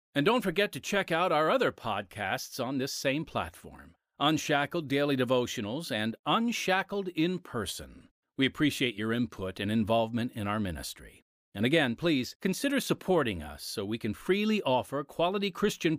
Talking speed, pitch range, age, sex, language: 160 wpm, 115-175 Hz, 40-59, male, English